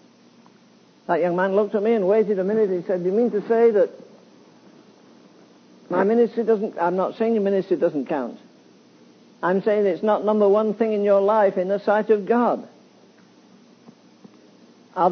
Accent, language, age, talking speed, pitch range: British, English, 60-79, 175 wpm, 200-235 Hz